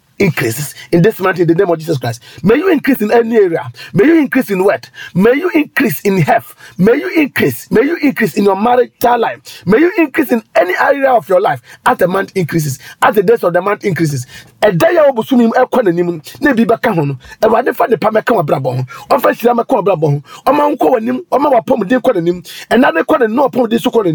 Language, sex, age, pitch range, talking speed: English, male, 40-59, 170-260 Hz, 190 wpm